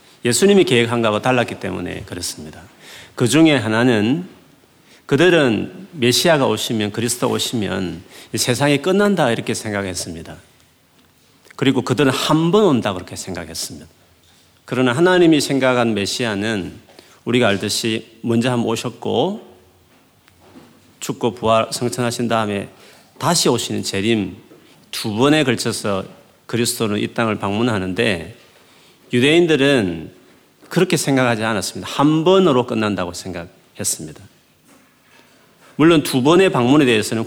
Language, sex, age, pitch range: Korean, male, 40-59, 105-130 Hz